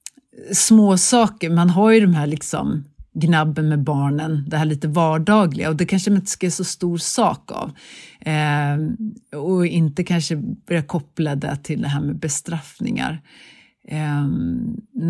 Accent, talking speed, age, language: native, 155 wpm, 40-59, Swedish